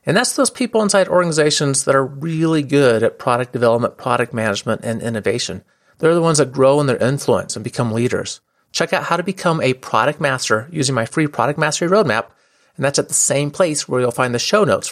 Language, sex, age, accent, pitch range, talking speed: English, male, 40-59, American, 120-170 Hz, 215 wpm